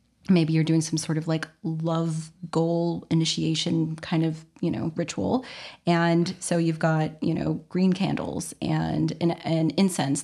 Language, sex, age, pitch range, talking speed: English, female, 30-49, 160-185 Hz, 160 wpm